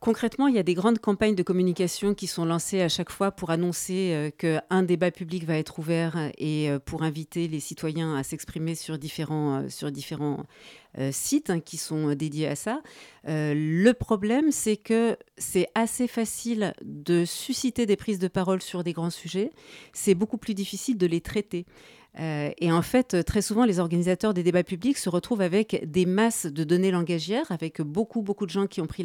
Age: 40-59